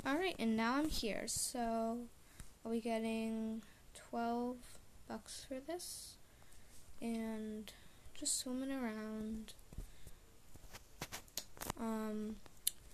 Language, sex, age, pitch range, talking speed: English, female, 10-29, 220-255 Hz, 90 wpm